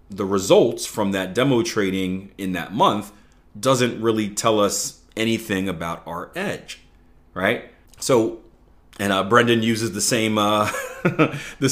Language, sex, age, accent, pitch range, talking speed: English, male, 30-49, American, 90-120 Hz, 130 wpm